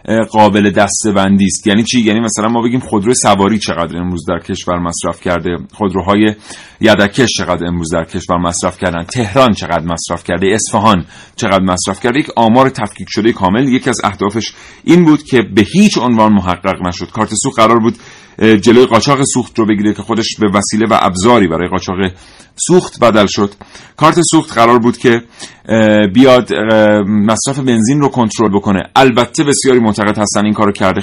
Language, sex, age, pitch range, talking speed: Persian, male, 40-59, 95-120 Hz, 170 wpm